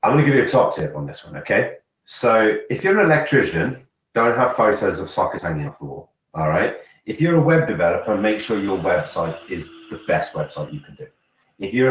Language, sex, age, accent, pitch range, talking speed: English, male, 30-49, British, 100-130 Hz, 230 wpm